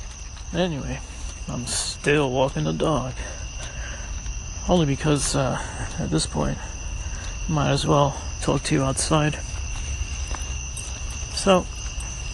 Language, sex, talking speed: English, male, 95 wpm